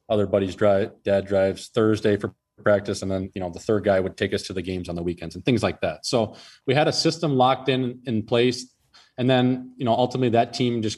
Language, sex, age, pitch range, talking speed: English, male, 20-39, 100-120 Hz, 245 wpm